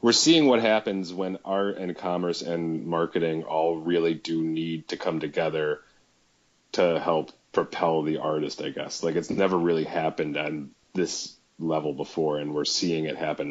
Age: 30-49